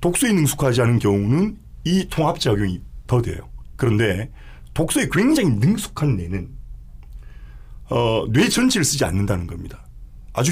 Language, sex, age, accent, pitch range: Korean, male, 40-59, native, 95-155 Hz